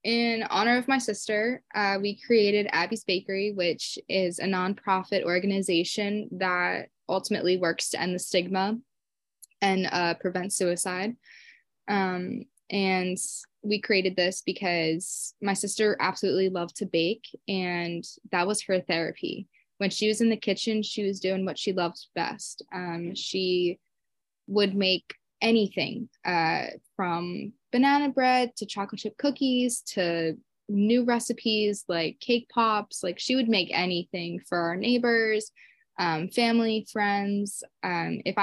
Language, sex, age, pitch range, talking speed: English, female, 20-39, 175-215 Hz, 135 wpm